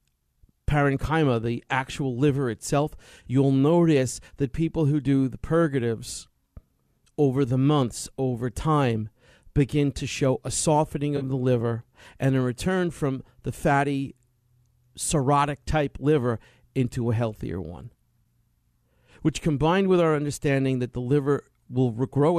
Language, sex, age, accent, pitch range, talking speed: English, male, 40-59, American, 120-155 Hz, 125 wpm